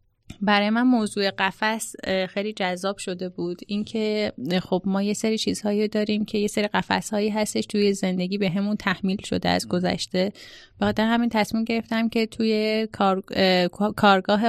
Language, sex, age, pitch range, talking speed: Persian, female, 30-49, 195-225 Hz, 150 wpm